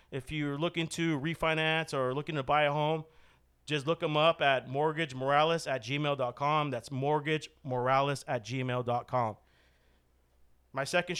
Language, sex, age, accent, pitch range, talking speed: English, male, 40-59, American, 135-160 Hz, 135 wpm